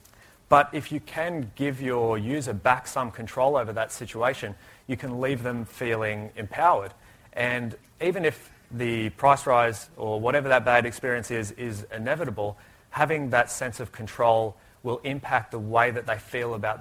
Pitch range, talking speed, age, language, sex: 105-125 Hz, 165 wpm, 30-49, English, male